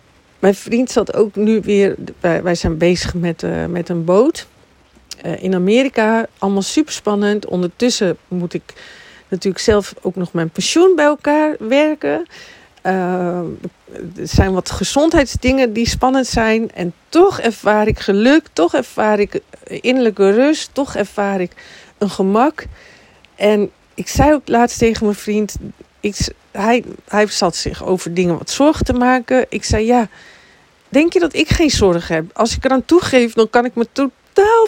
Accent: Dutch